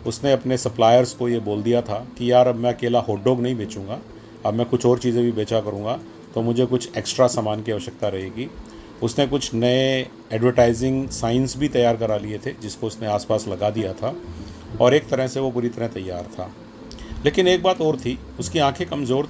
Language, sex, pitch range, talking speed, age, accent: Hindi, male, 105-130 Hz, 200 wpm, 40-59, native